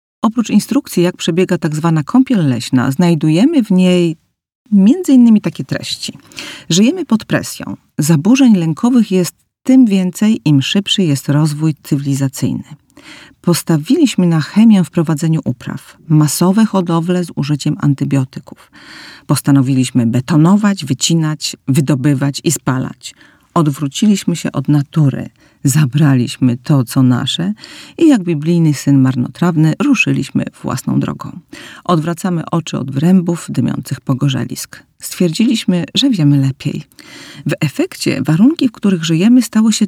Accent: native